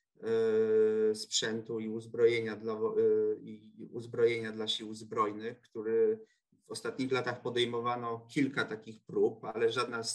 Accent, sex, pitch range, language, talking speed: native, male, 110-150 Hz, Polish, 130 wpm